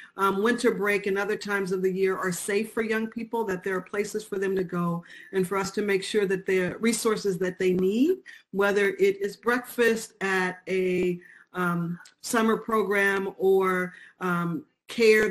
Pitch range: 185-210 Hz